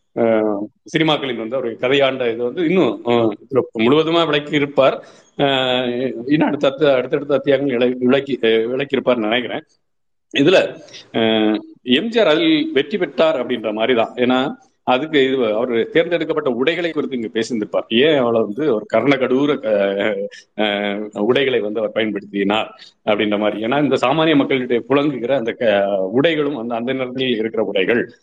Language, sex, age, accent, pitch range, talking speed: Tamil, male, 50-69, native, 110-135 Hz, 120 wpm